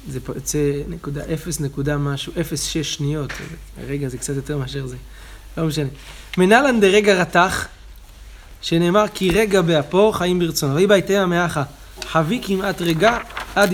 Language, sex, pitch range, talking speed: Hebrew, male, 145-195 Hz, 145 wpm